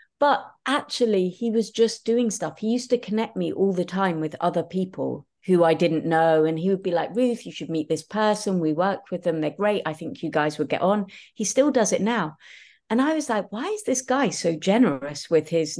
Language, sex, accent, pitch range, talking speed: English, female, British, 160-225 Hz, 240 wpm